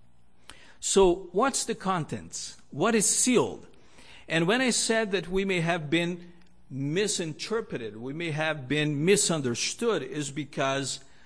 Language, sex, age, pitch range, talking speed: English, male, 50-69, 135-200 Hz, 130 wpm